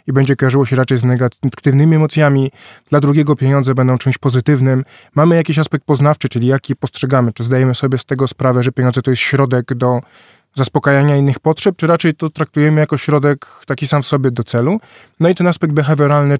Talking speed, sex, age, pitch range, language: 200 wpm, male, 20-39, 130-155 Hz, Polish